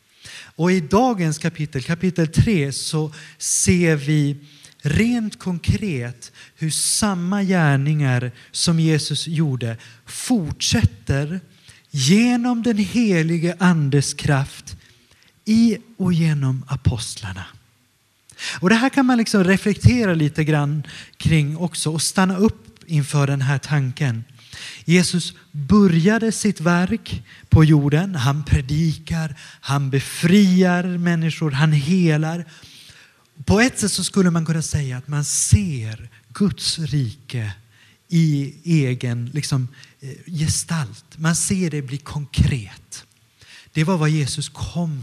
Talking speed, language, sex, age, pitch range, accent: 115 wpm, Swedish, male, 30-49, 130-175 Hz, native